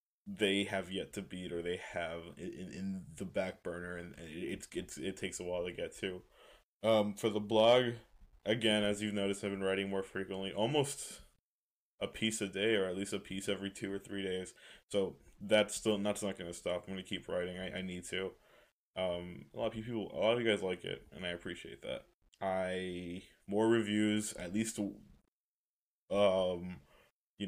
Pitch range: 90-105 Hz